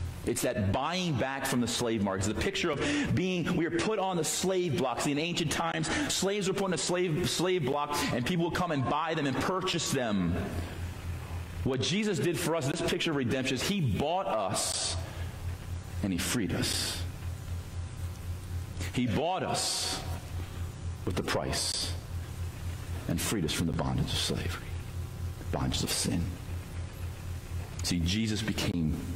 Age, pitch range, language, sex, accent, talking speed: 40-59, 90-125 Hz, English, male, American, 165 wpm